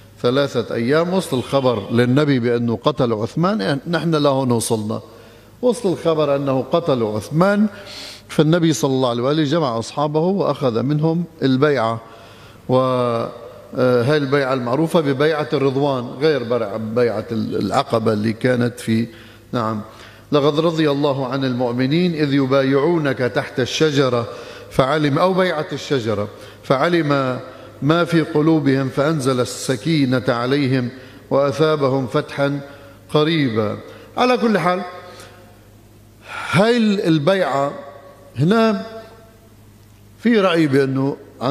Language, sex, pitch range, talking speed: Arabic, male, 120-155 Hz, 105 wpm